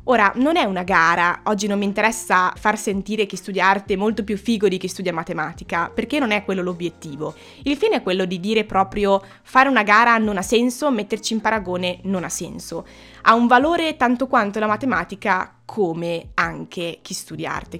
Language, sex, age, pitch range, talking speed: Italian, female, 20-39, 180-225 Hz, 190 wpm